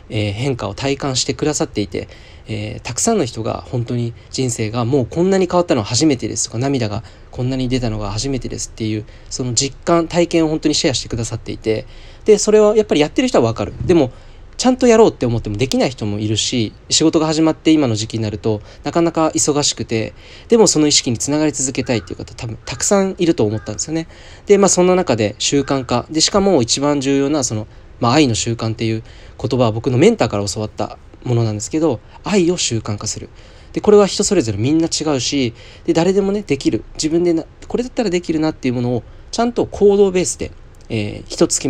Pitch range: 110-160 Hz